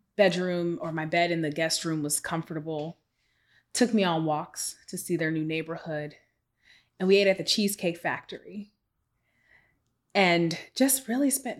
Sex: female